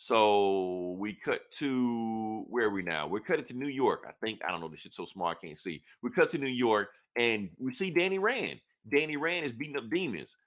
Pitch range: 95-140 Hz